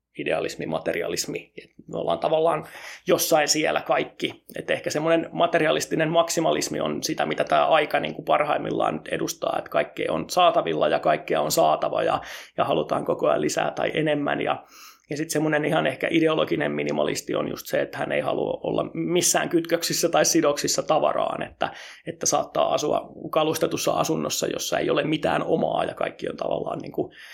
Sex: male